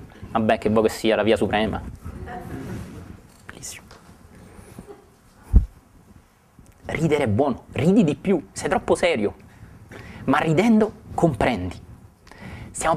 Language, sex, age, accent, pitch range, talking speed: Italian, male, 30-49, native, 105-145 Hz, 100 wpm